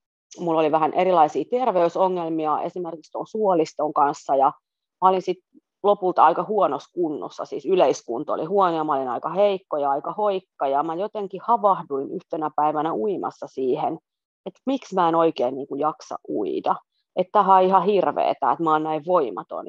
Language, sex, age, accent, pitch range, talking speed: Finnish, female, 30-49, native, 160-205 Hz, 170 wpm